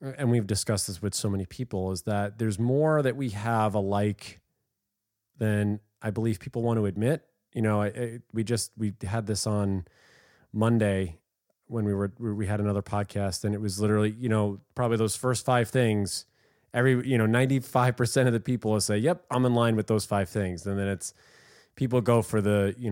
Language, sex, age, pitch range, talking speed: English, male, 30-49, 100-120 Hz, 200 wpm